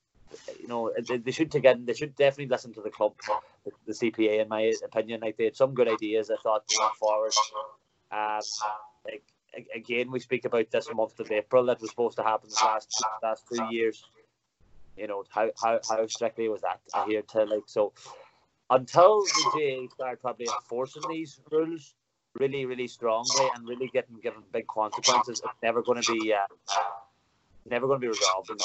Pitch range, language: 110-130 Hz, English